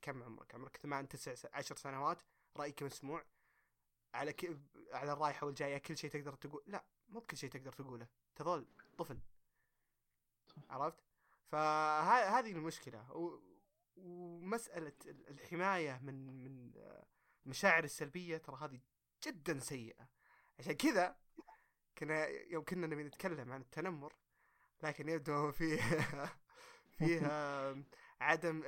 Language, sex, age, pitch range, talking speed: Arabic, male, 20-39, 135-165 Hz, 115 wpm